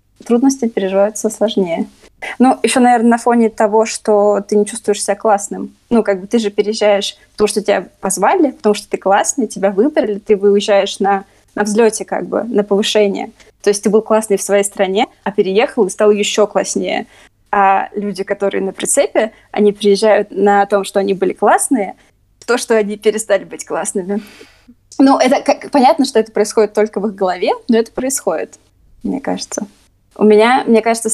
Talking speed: 180 wpm